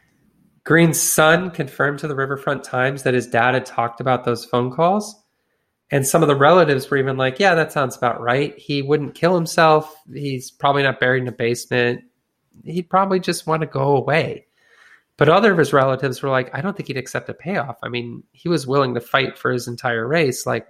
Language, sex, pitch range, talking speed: English, male, 125-155 Hz, 210 wpm